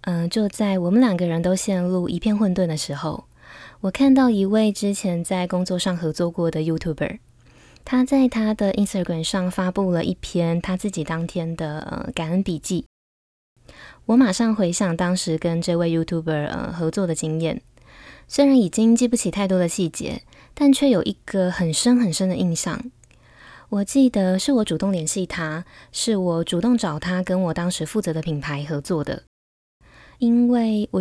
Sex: female